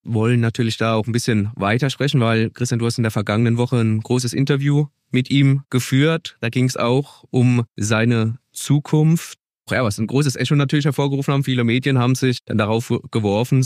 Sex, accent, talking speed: male, German, 195 wpm